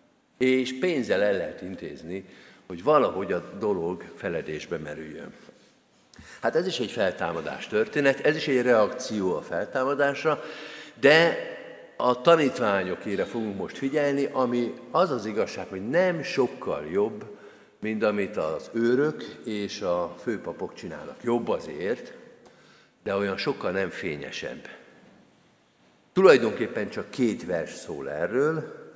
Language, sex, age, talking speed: Hungarian, male, 50-69, 120 wpm